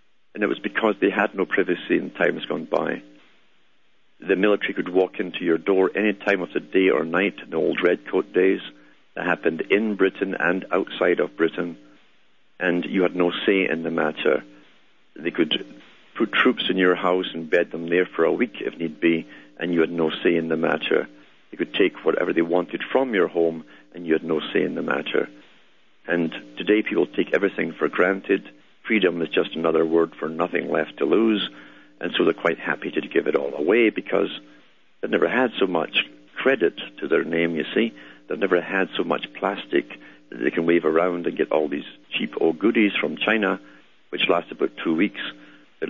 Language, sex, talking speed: English, male, 200 wpm